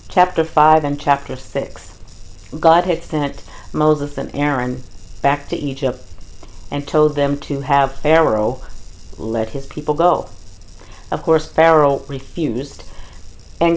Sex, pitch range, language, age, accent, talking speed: female, 130-160 Hz, English, 50-69, American, 125 wpm